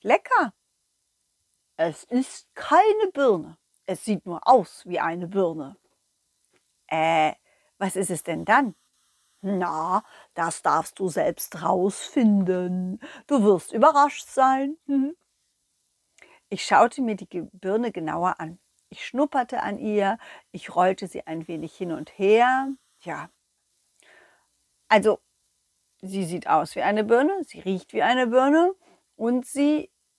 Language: German